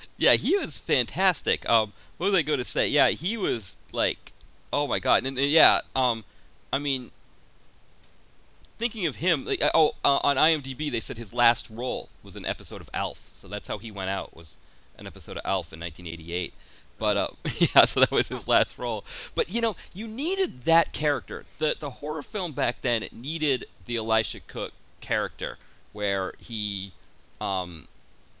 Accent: American